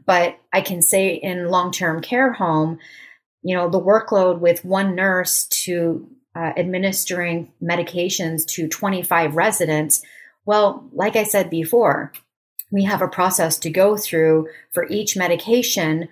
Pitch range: 170-215 Hz